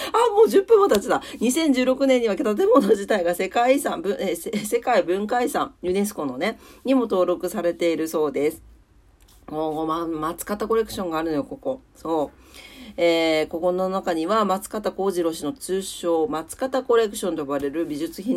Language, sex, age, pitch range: Japanese, female, 40-59, 155-225 Hz